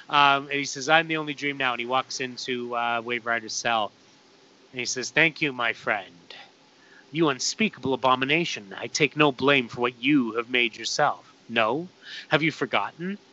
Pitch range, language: 130-160 Hz, English